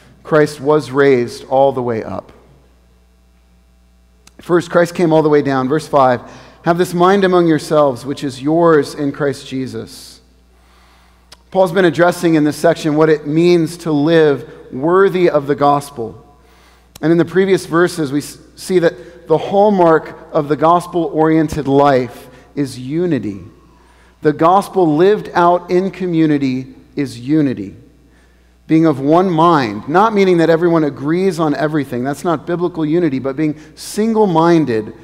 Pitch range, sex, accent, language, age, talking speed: 130-170 Hz, male, American, English, 40-59, 145 wpm